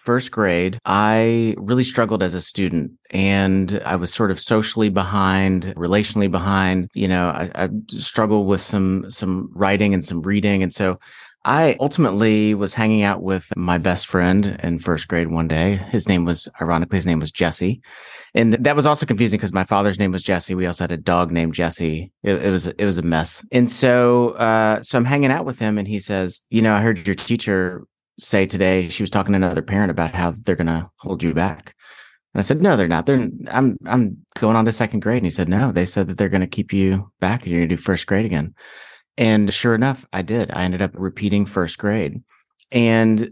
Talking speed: 215 wpm